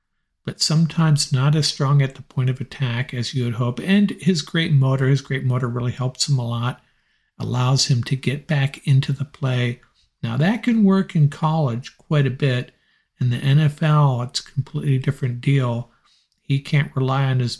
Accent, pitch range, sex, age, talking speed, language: American, 125-150 Hz, male, 50-69, 190 wpm, English